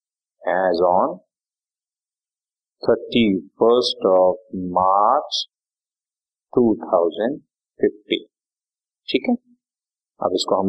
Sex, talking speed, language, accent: male, 80 wpm, Hindi, native